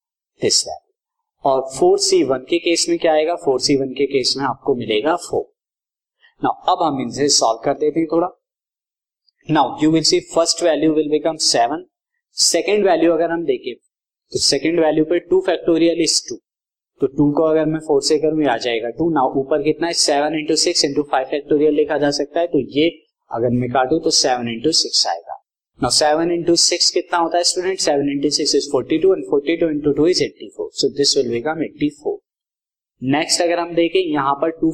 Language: Hindi